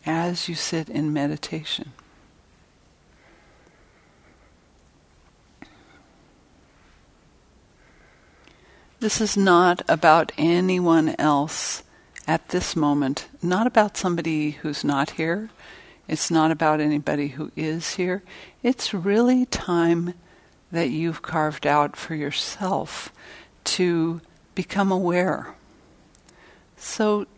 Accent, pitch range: American, 155-185 Hz